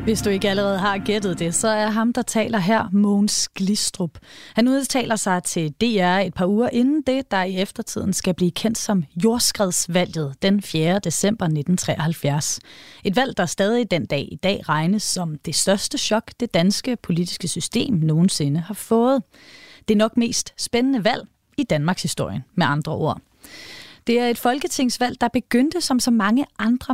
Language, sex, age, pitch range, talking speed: Danish, female, 30-49, 180-240 Hz, 175 wpm